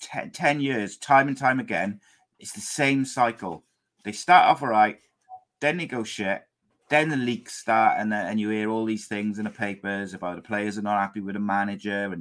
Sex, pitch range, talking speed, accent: male, 95-115 Hz, 215 wpm, British